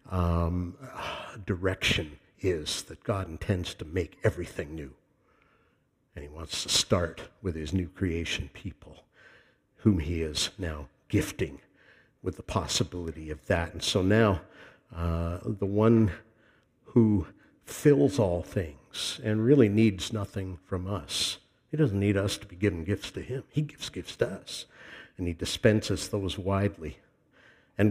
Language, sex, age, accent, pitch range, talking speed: English, male, 60-79, American, 90-120 Hz, 145 wpm